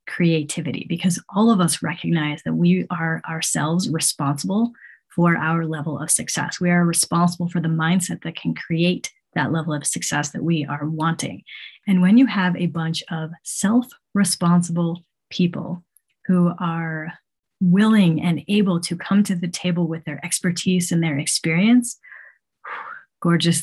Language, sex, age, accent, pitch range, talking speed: English, female, 30-49, American, 160-185 Hz, 150 wpm